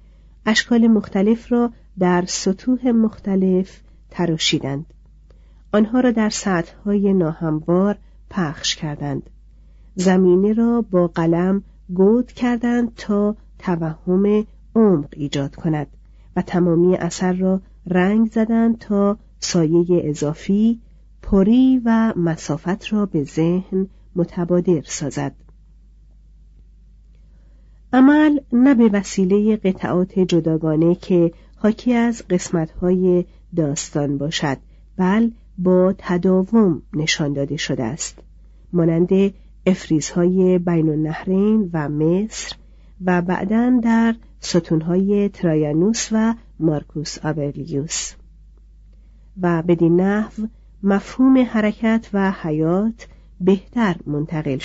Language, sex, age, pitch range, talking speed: Persian, female, 50-69, 155-210 Hz, 90 wpm